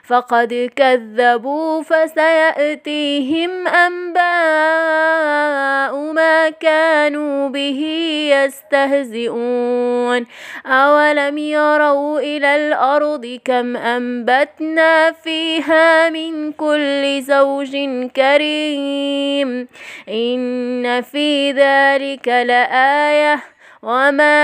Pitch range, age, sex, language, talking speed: 275-315 Hz, 20-39, female, Arabic, 60 wpm